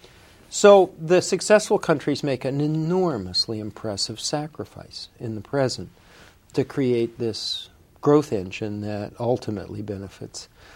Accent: American